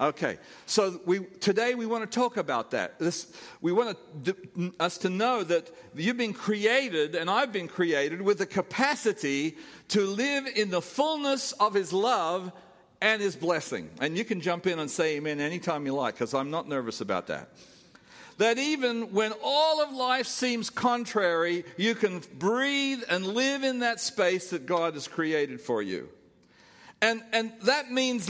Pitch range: 185-240 Hz